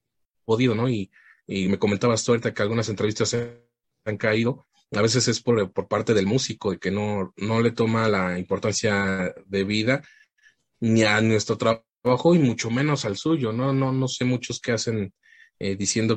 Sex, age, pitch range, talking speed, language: male, 30-49, 105-125 Hz, 180 wpm, Spanish